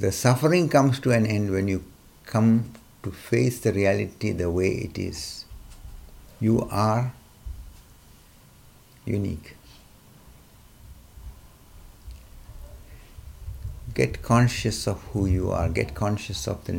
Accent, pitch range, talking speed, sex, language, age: Indian, 90-115 Hz, 105 wpm, male, English, 60-79